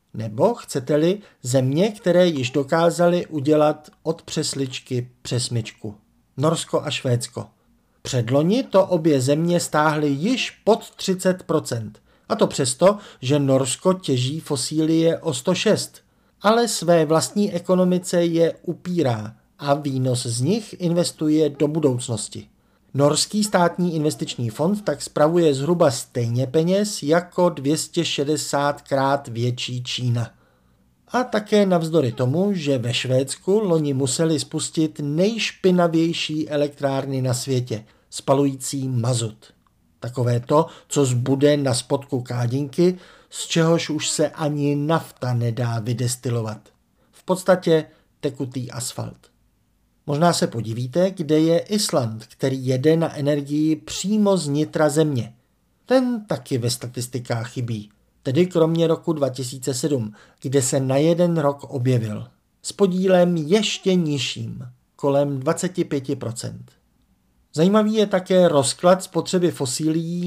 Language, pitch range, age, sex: Czech, 130-170 Hz, 50-69, male